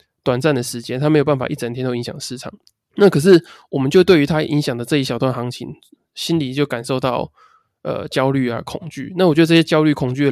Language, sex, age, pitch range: Chinese, male, 20-39, 125-150 Hz